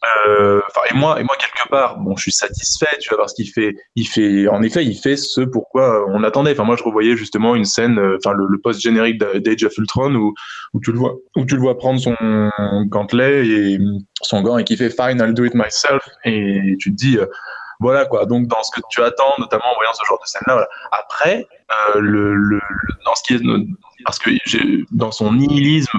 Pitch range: 110-135 Hz